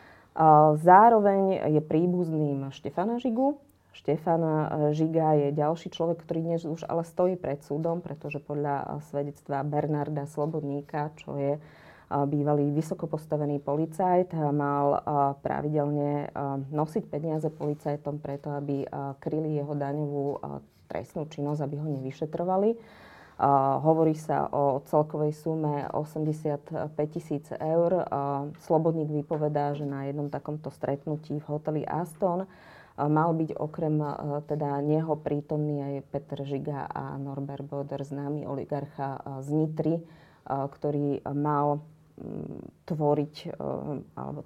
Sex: female